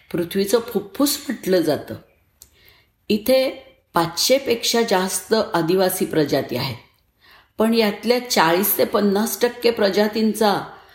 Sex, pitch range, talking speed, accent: female, 160-230 Hz, 100 wpm, native